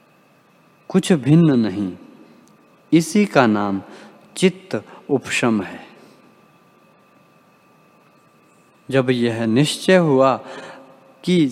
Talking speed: 75 wpm